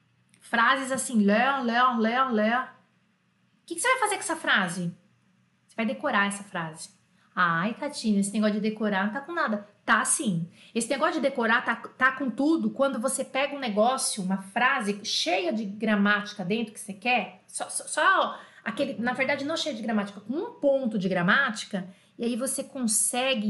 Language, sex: French, female